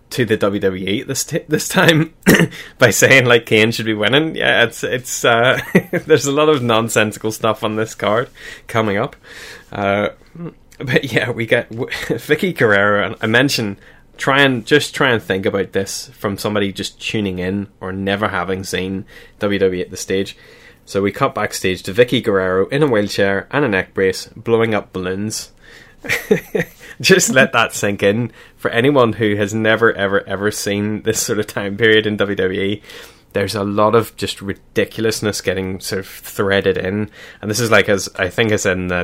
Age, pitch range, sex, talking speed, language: 20-39, 95-115 Hz, male, 185 wpm, English